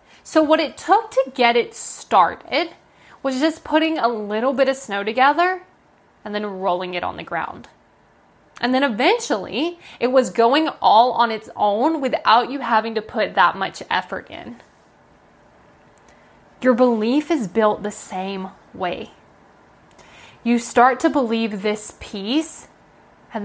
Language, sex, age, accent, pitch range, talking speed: English, female, 10-29, American, 215-280 Hz, 145 wpm